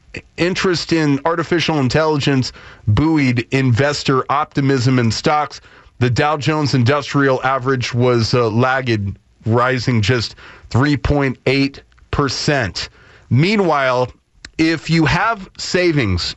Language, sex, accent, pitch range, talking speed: English, male, American, 125-155 Hz, 90 wpm